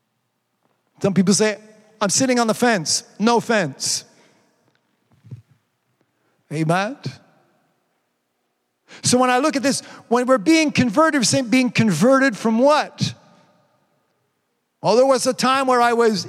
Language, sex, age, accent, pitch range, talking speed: English, male, 50-69, American, 180-260 Hz, 130 wpm